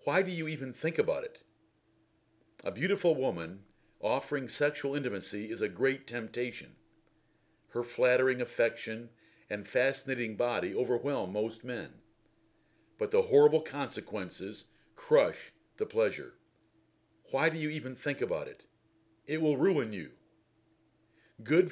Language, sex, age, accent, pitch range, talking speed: English, male, 50-69, American, 110-155 Hz, 125 wpm